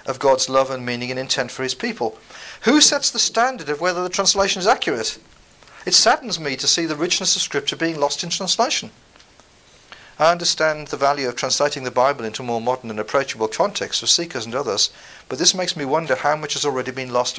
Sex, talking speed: male, 215 wpm